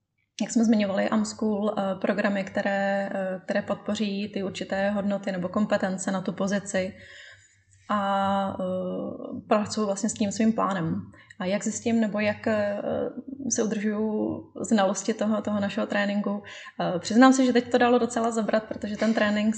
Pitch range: 195-215 Hz